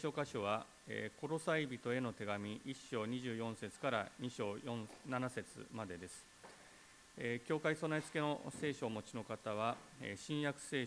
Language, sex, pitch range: Japanese, male, 110-145 Hz